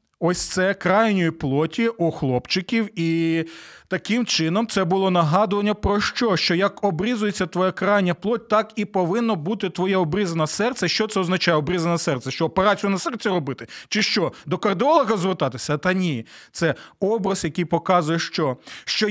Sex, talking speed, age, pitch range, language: male, 155 wpm, 30-49, 185-235 Hz, Ukrainian